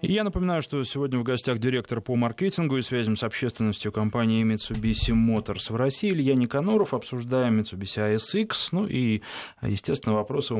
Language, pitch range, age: Russian, 95-125 Hz, 20-39